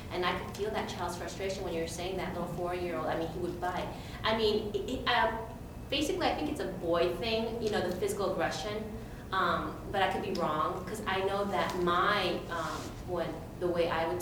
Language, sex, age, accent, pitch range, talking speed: English, female, 20-39, American, 170-195 Hz, 210 wpm